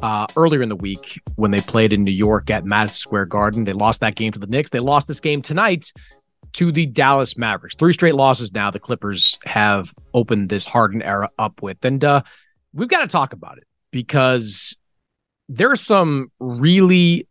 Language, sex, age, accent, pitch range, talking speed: English, male, 30-49, American, 115-190 Hz, 200 wpm